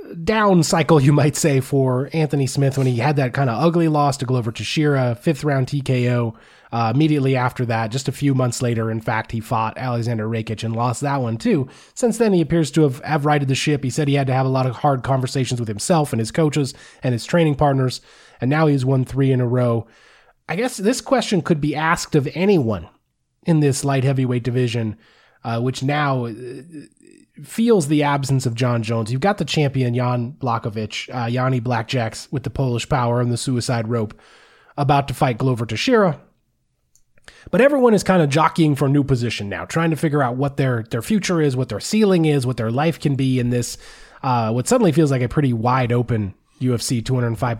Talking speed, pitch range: 210 wpm, 120-150 Hz